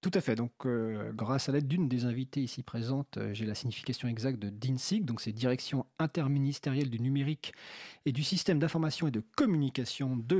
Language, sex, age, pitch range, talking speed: French, male, 40-59, 115-150 Hz, 195 wpm